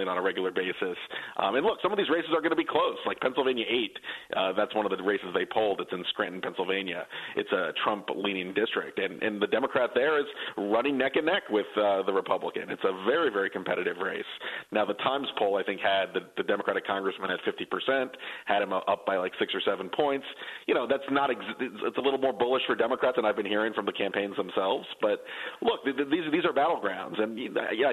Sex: male